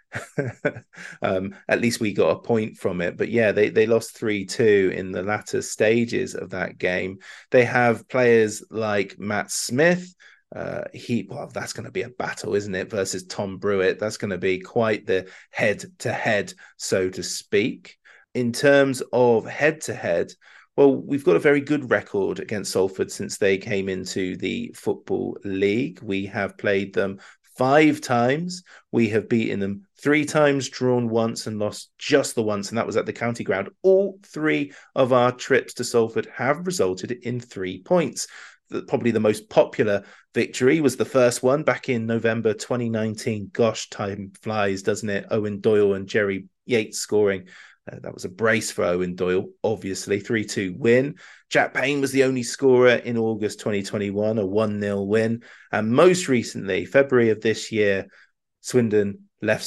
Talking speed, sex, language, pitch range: 165 wpm, male, English, 100-125 Hz